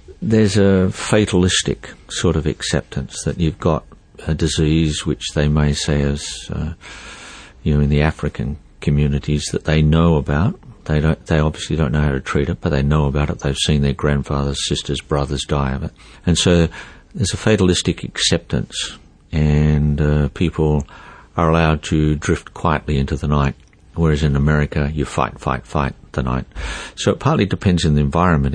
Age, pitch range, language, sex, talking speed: 50-69, 75-85 Hz, English, male, 175 wpm